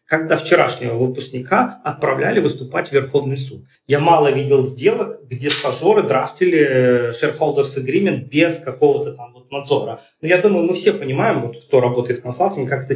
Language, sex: Russian, male